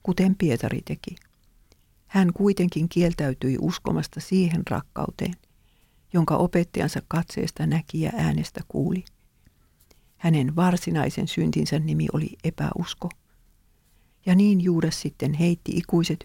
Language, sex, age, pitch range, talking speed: English, female, 50-69, 150-180 Hz, 105 wpm